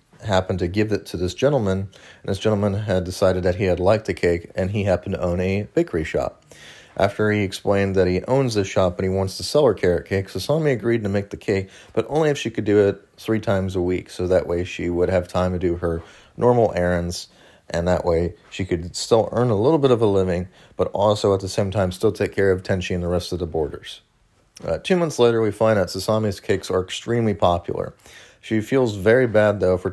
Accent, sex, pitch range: American, male, 90-110 Hz